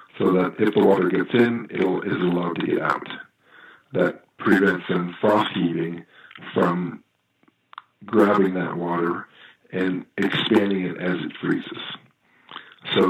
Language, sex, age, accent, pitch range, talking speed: English, male, 50-69, American, 90-105 Hz, 135 wpm